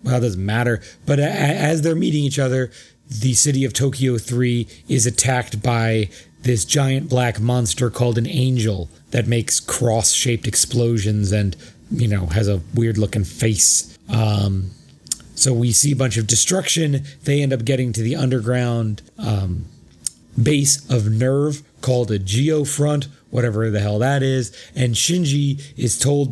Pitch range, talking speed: 115-140 Hz, 155 wpm